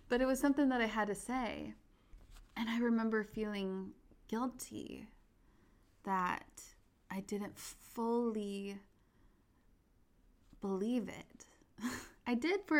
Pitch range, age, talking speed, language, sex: 185-210 Hz, 20-39, 110 wpm, English, female